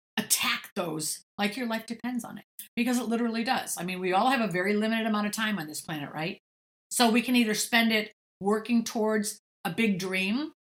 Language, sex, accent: English, female, American